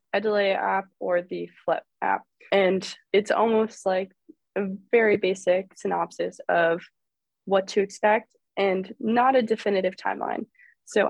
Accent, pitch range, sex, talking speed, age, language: American, 185-230 Hz, female, 130 wpm, 20-39, English